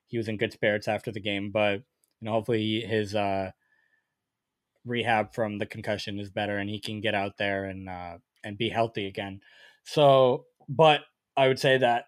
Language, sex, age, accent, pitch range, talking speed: English, male, 20-39, American, 110-135 Hz, 190 wpm